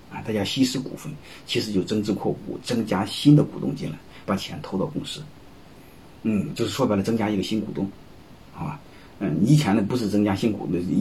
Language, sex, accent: Chinese, male, native